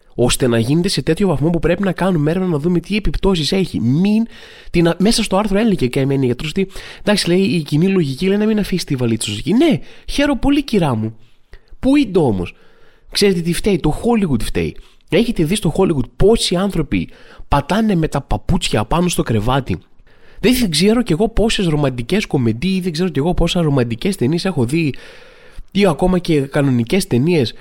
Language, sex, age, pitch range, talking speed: Greek, male, 20-39, 135-200 Hz, 195 wpm